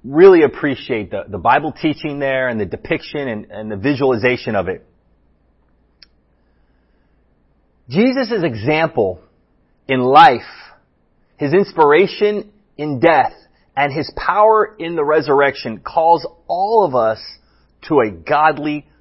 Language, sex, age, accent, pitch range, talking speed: English, male, 30-49, American, 125-190 Hz, 115 wpm